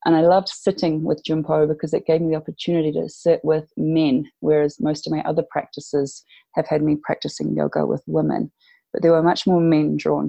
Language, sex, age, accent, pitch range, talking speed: English, female, 30-49, Australian, 150-175 Hz, 210 wpm